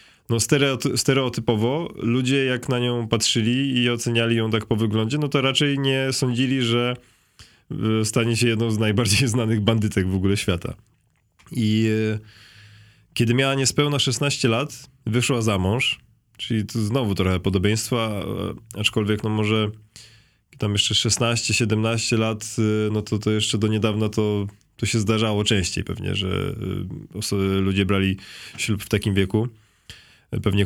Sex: male